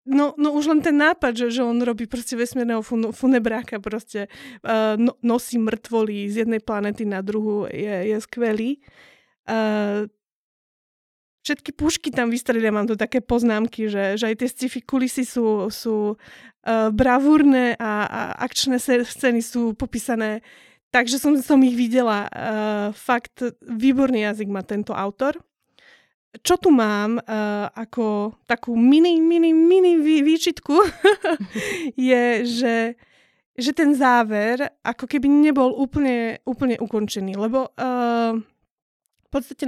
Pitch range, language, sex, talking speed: 220-260 Hz, Slovak, female, 130 wpm